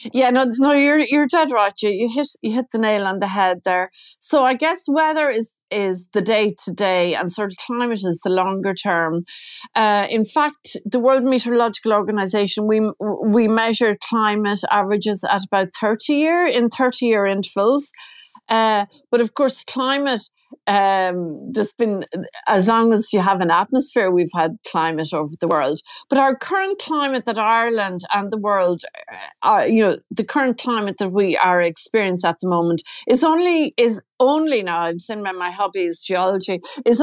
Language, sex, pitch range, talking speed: English, female, 185-245 Hz, 180 wpm